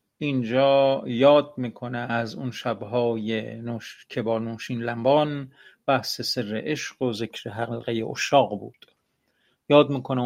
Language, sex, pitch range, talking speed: Persian, male, 115-135 Hz, 125 wpm